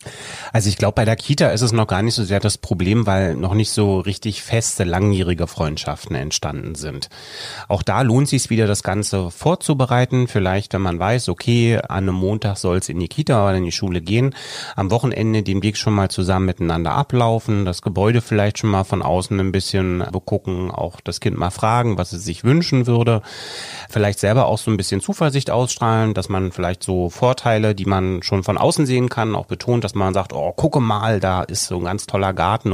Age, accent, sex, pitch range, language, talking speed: 30-49, German, male, 95-120 Hz, German, 210 wpm